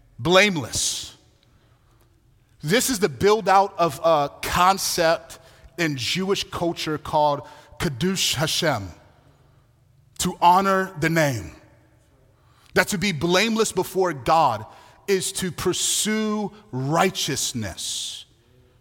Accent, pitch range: American, 125-195 Hz